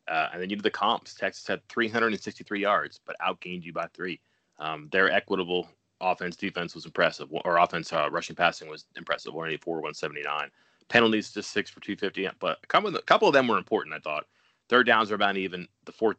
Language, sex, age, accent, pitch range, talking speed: English, male, 30-49, American, 85-110 Hz, 195 wpm